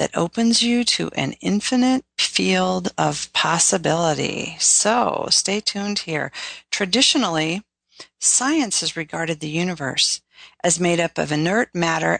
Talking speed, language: 125 wpm, English